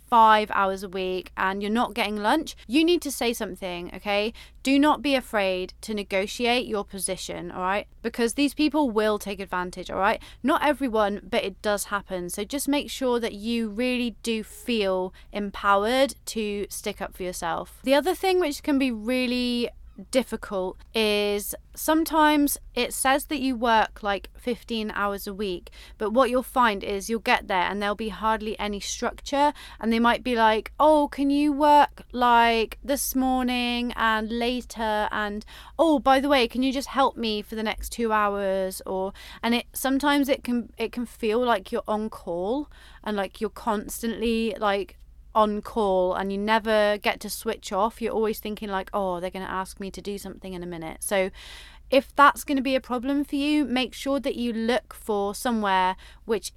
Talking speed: 190 wpm